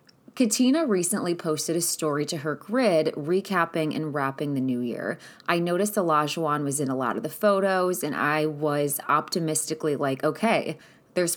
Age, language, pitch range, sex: 20-39, English, 145-185 Hz, female